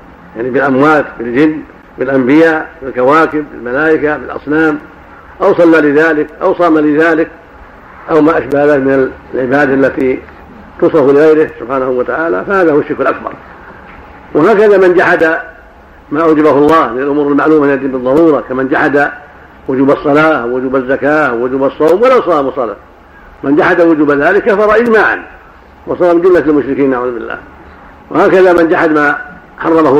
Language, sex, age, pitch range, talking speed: Arabic, male, 70-89, 140-165 Hz, 130 wpm